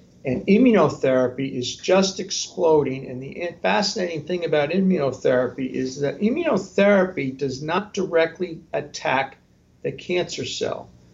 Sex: male